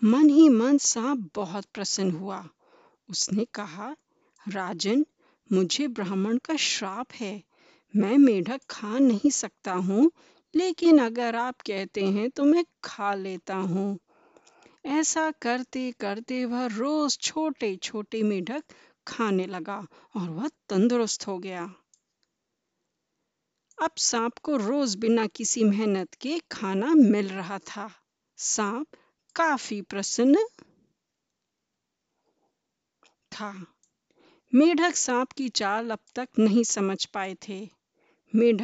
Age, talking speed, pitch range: 50-69, 110 wpm, 200-270 Hz